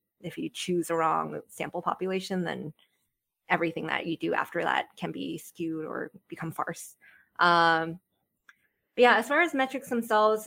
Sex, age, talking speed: female, 20-39, 155 wpm